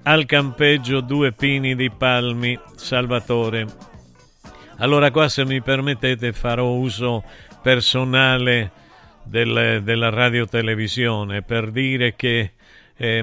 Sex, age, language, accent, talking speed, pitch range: male, 50-69, Italian, native, 100 wpm, 100-120 Hz